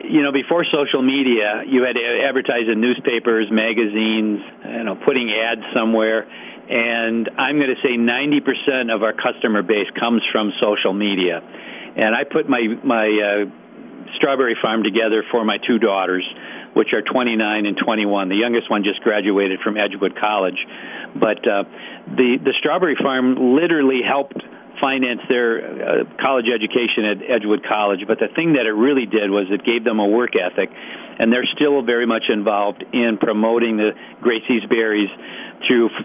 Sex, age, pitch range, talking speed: male, 50-69, 105-125 Hz, 165 wpm